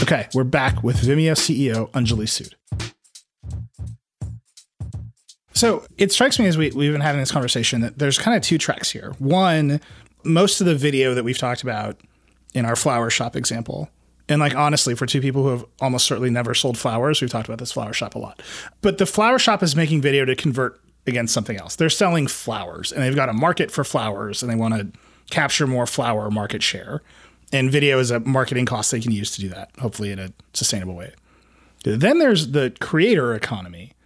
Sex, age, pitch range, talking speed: male, 30-49, 110-145 Hz, 200 wpm